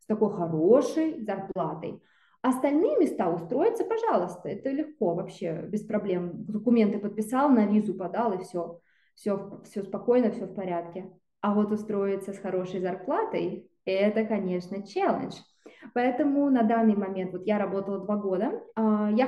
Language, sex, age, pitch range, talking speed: Russian, female, 20-39, 195-245 Hz, 145 wpm